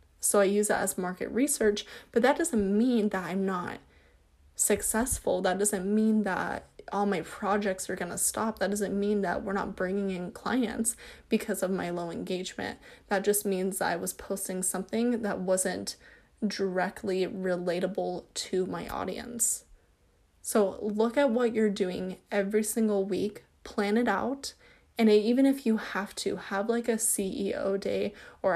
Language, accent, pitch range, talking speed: English, American, 190-225 Hz, 165 wpm